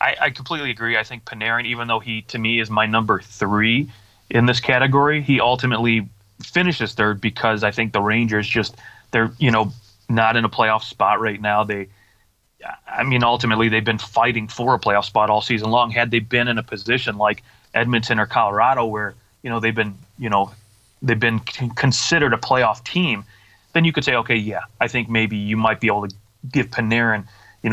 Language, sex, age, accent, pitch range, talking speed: English, male, 30-49, American, 105-125 Hz, 205 wpm